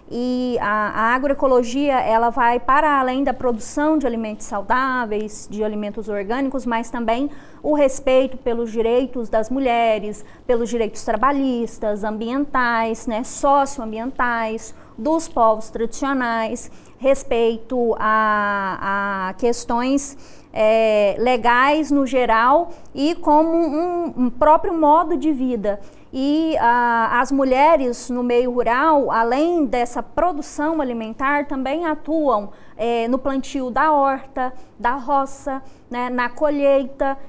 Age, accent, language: 20-39, Brazilian, Portuguese